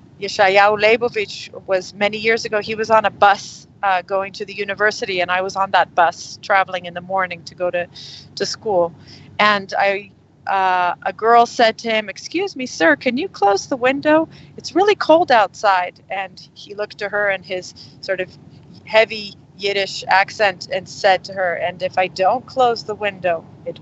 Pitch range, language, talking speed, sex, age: 185-250 Hz, English, 185 wpm, female, 40-59